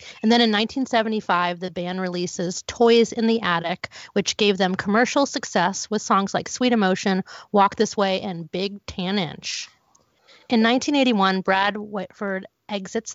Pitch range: 185-225 Hz